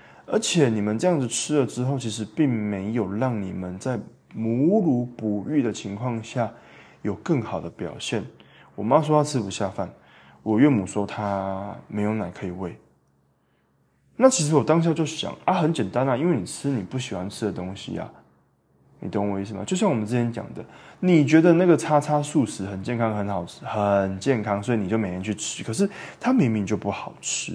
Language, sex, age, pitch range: Chinese, male, 20-39, 100-140 Hz